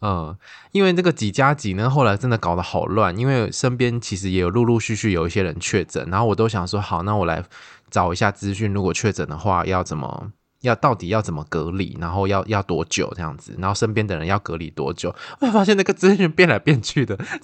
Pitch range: 95-120 Hz